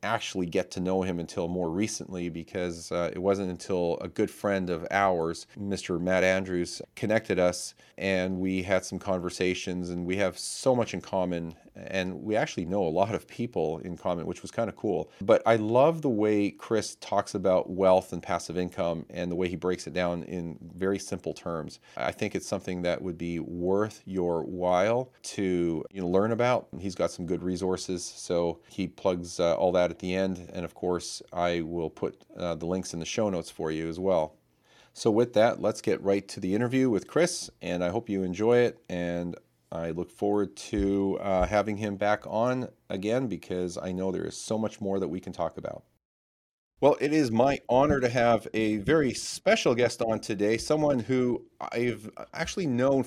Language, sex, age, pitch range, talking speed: English, male, 40-59, 90-110 Hz, 200 wpm